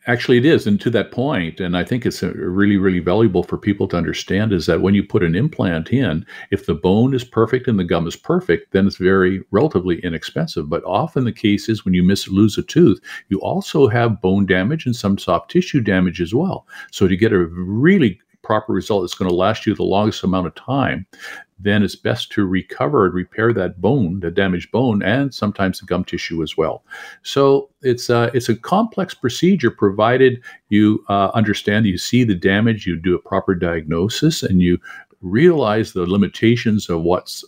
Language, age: English, 50-69